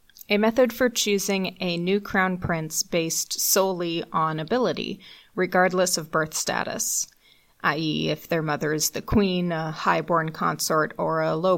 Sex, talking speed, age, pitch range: female, 155 wpm, 30-49, 165-210 Hz